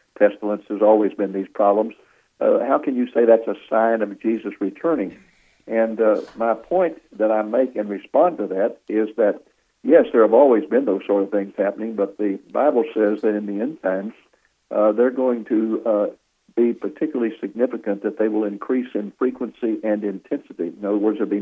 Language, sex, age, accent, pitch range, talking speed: English, male, 60-79, American, 100-115 Hz, 195 wpm